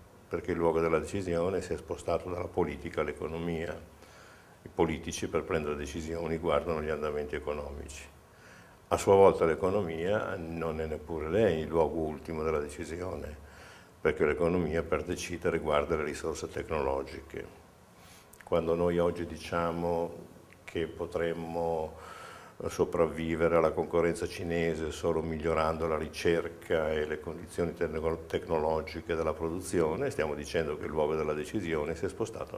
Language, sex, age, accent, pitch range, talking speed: Italian, male, 60-79, native, 80-90 Hz, 130 wpm